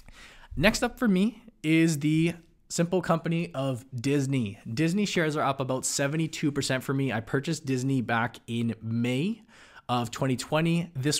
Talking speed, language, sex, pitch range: 145 wpm, English, male, 120-145 Hz